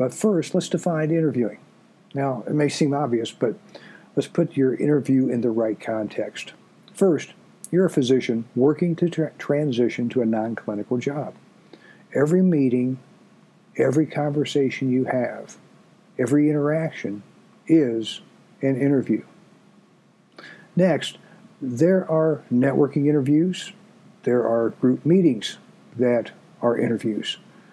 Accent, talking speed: American, 115 wpm